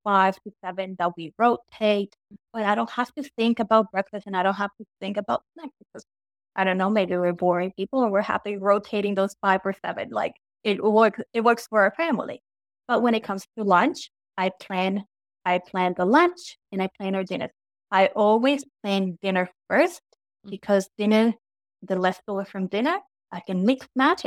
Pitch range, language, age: 190-230 Hz, English, 20-39